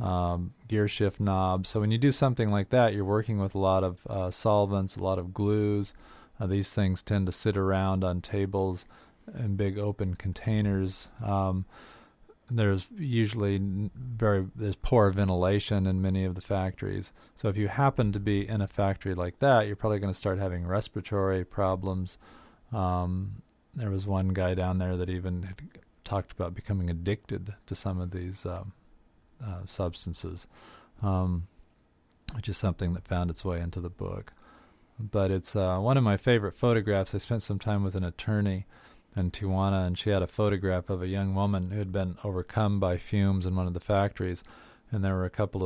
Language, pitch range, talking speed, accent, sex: English, 90-105 Hz, 185 wpm, American, male